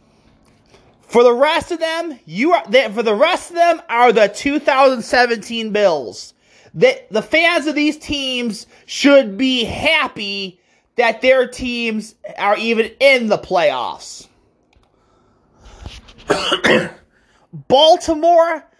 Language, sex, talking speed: English, male, 110 wpm